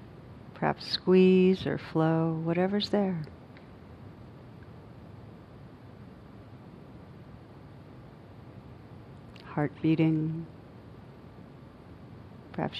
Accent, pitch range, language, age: American, 125-170 Hz, English, 60-79